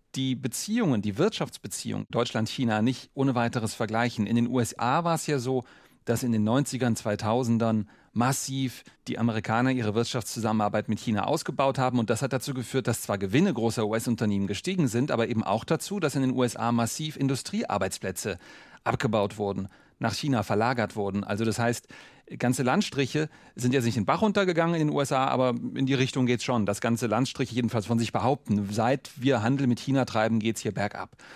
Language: German